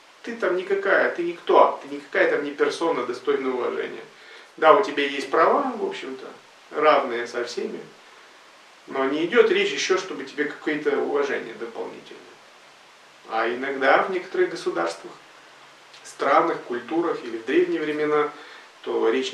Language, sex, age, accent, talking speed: Russian, male, 40-59, native, 140 wpm